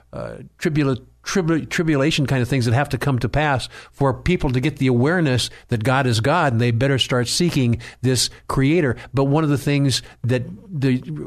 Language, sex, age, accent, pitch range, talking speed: English, male, 50-69, American, 120-140 Hz, 185 wpm